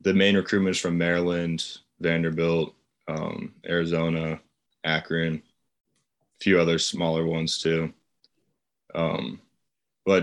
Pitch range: 80-90 Hz